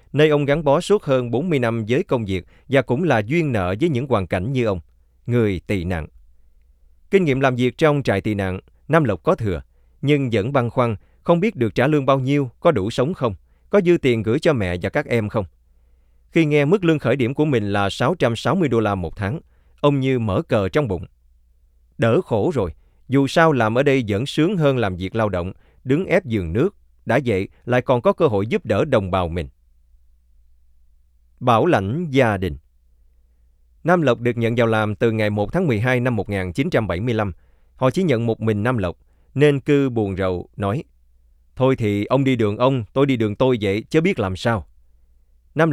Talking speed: 205 wpm